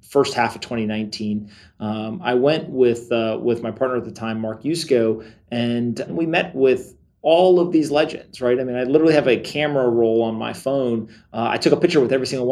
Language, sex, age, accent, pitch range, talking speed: English, male, 30-49, American, 120-150 Hz, 215 wpm